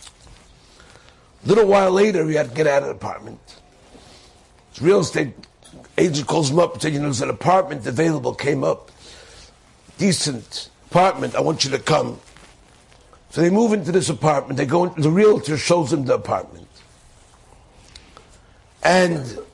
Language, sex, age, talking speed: English, male, 60-79, 160 wpm